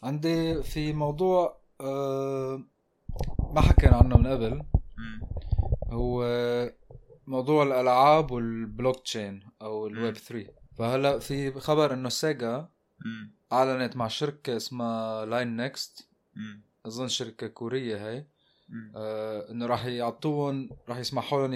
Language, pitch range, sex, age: Arabic, 115-135 Hz, male, 20-39